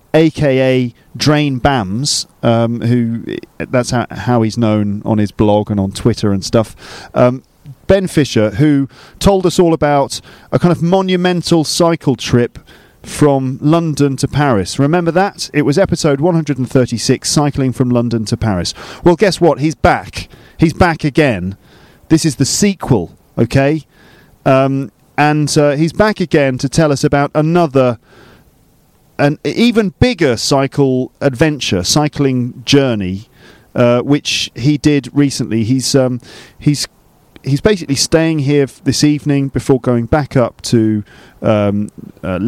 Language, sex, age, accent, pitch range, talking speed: English, male, 40-59, British, 120-155 Hz, 140 wpm